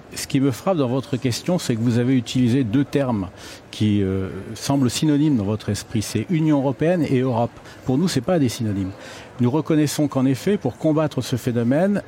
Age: 50-69